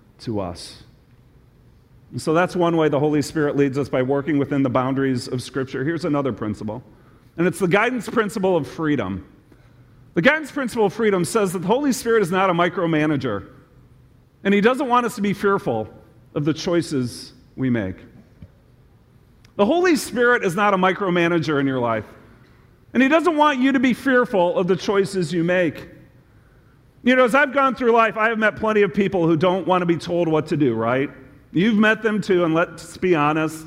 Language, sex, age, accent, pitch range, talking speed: English, male, 40-59, American, 130-205 Hz, 195 wpm